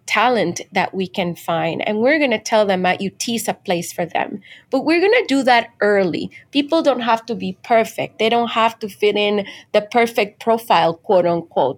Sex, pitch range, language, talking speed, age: female, 190-235 Hz, English, 215 wpm, 30-49